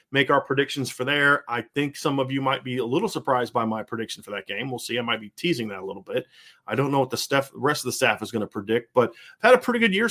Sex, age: male, 30-49